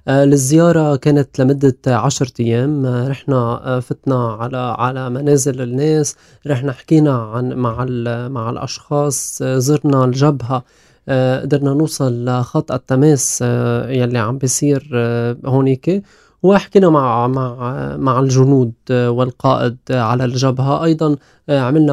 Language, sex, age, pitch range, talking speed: Arabic, male, 20-39, 125-145 Hz, 100 wpm